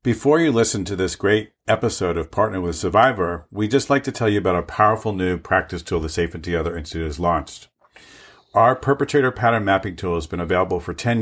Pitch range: 95-115 Hz